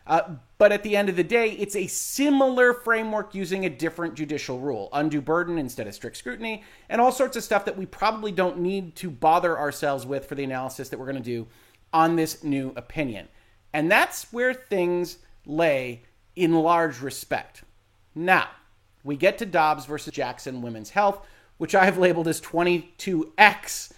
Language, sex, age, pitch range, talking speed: English, male, 30-49, 150-200 Hz, 180 wpm